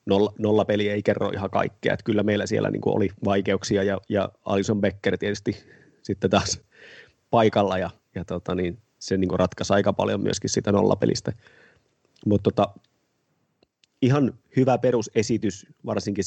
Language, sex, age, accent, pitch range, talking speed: Finnish, male, 30-49, native, 95-105 Hz, 140 wpm